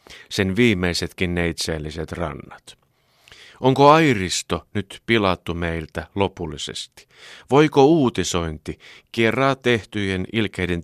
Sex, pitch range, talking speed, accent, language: male, 85-110 Hz, 85 wpm, native, Finnish